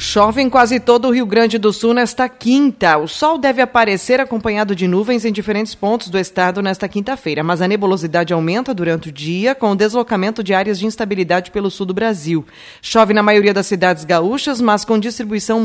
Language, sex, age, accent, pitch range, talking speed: Portuguese, female, 20-39, Brazilian, 190-240 Hz, 200 wpm